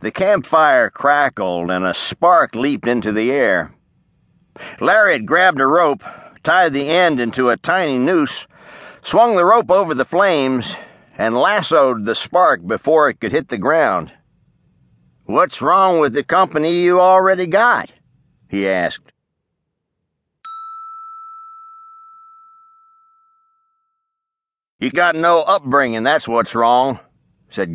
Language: English